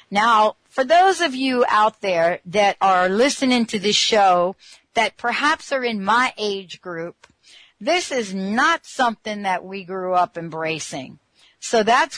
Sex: female